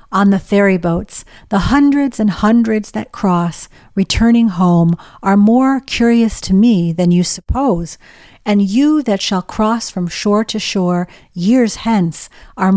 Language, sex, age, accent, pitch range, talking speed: English, female, 50-69, American, 180-230 Hz, 150 wpm